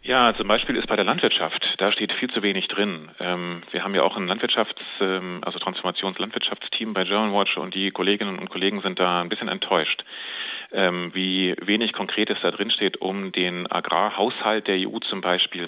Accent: German